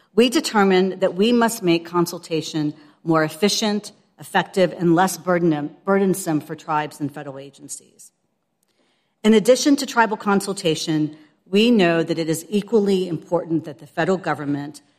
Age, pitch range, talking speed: 50-69, 155-200 Hz, 135 wpm